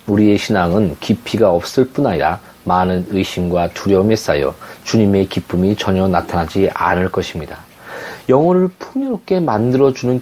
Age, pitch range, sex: 40-59, 100-150 Hz, male